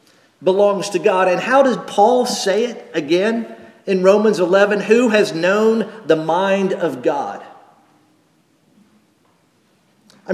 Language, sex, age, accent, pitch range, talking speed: English, male, 50-69, American, 155-220 Hz, 120 wpm